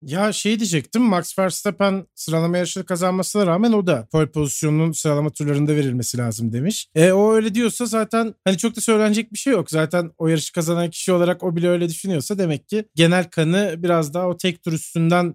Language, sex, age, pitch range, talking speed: Turkish, male, 40-59, 155-205 Hz, 195 wpm